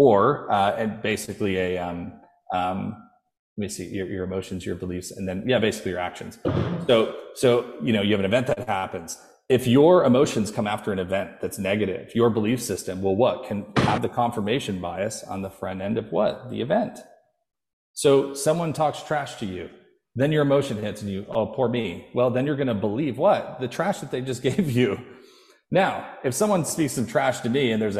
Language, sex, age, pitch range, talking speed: English, male, 30-49, 95-130 Hz, 205 wpm